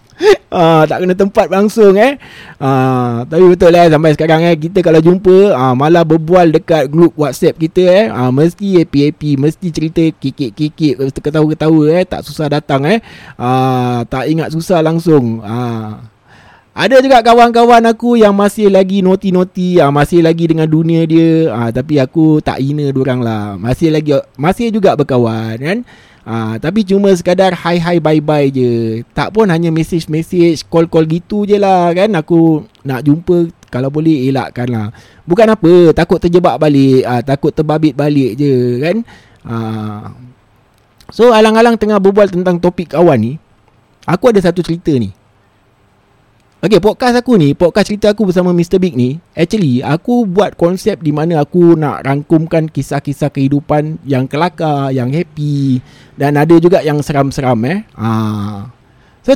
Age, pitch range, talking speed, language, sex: 20-39, 130-180 Hz, 155 wpm, Malay, male